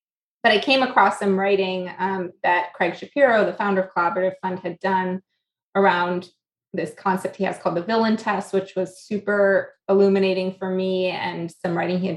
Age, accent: 20-39, American